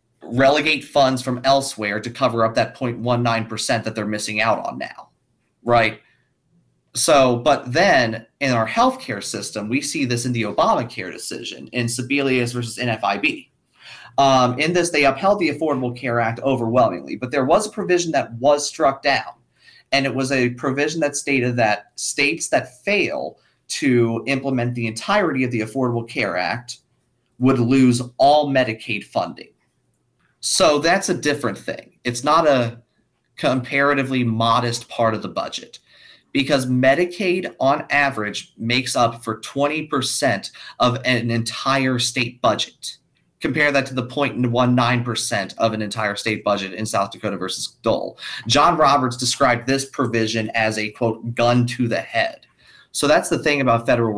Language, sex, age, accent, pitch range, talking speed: English, male, 30-49, American, 115-135 Hz, 155 wpm